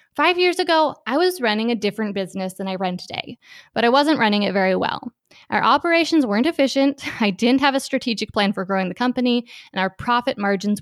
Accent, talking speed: American, 210 wpm